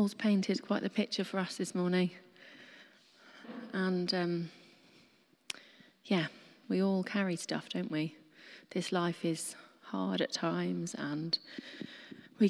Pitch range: 160-210 Hz